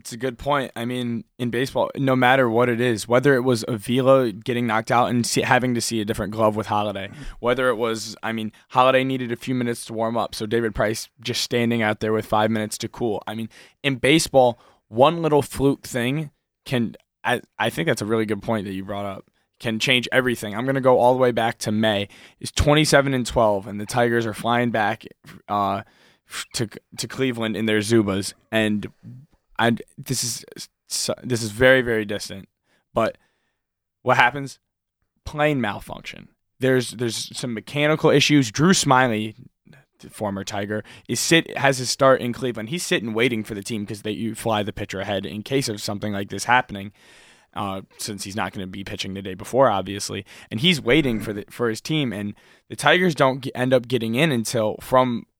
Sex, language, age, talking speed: male, English, 20-39, 205 wpm